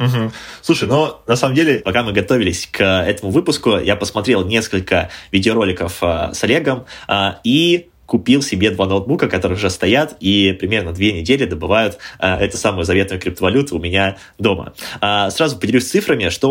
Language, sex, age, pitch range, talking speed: Russian, male, 20-39, 95-125 Hz, 150 wpm